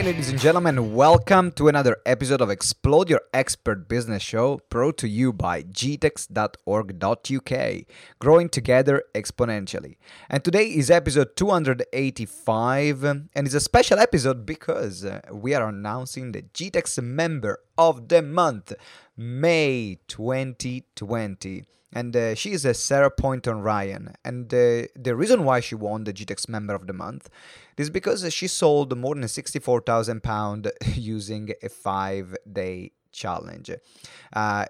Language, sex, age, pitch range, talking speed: English, male, 30-49, 110-135 Hz, 130 wpm